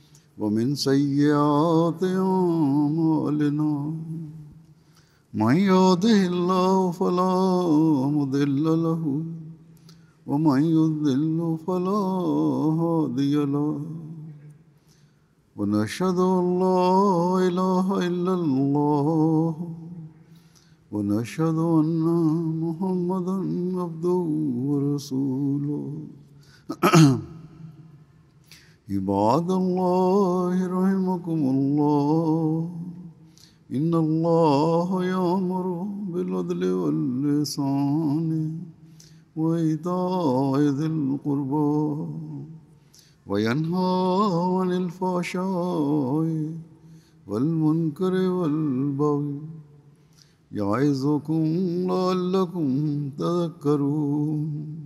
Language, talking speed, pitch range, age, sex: English, 45 wpm, 150-175 Hz, 50-69, male